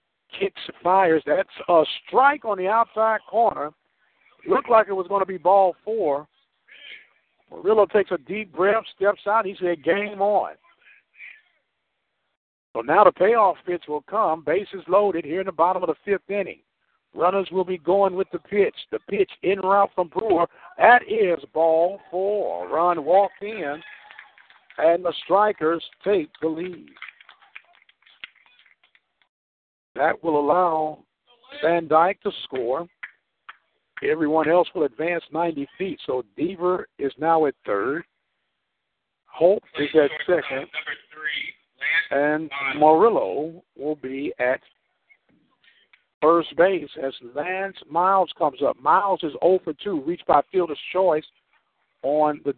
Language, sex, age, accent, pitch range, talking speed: English, male, 60-79, American, 160-200 Hz, 140 wpm